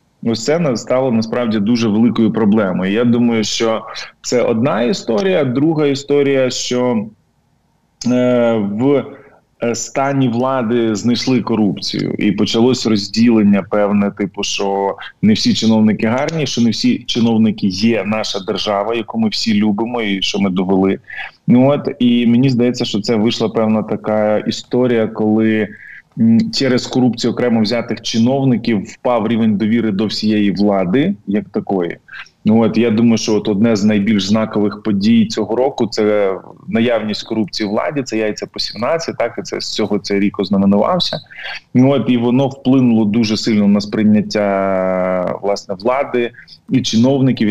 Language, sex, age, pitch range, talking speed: Ukrainian, male, 20-39, 105-125 Hz, 145 wpm